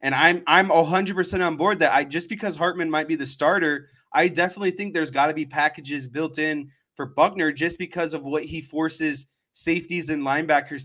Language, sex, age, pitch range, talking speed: English, male, 20-39, 145-170 Hz, 200 wpm